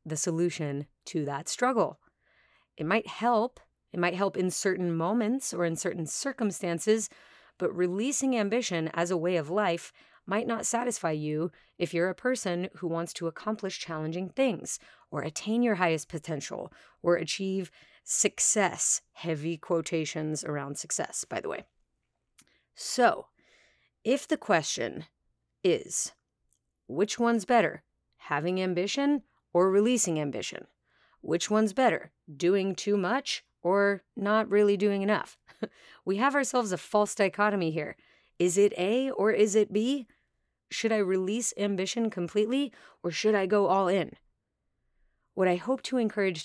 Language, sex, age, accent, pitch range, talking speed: English, female, 30-49, American, 165-215 Hz, 140 wpm